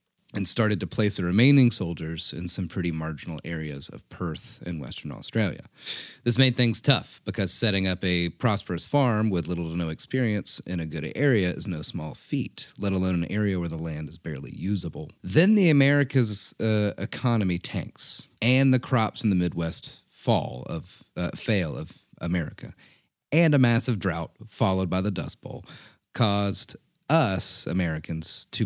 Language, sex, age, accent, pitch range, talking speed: English, male, 30-49, American, 85-120 Hz, 170 wpm